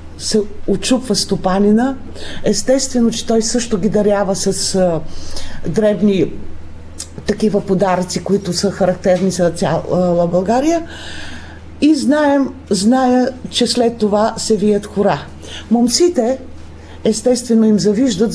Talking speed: 105 wpm